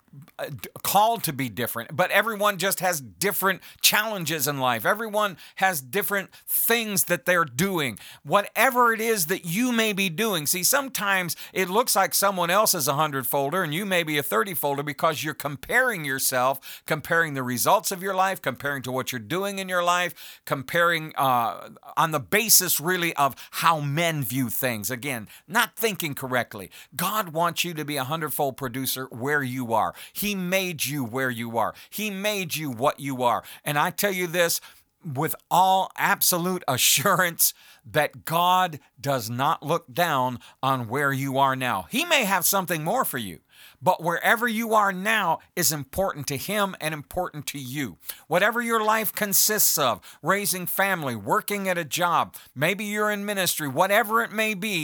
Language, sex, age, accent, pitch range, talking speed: English, male, 50-69, American, 140-195 Hz, 175 wpm